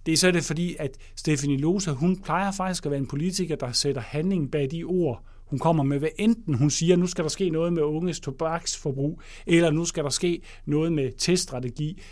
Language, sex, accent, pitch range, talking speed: English, male, Danish, 135-185 Hz, 225 wpm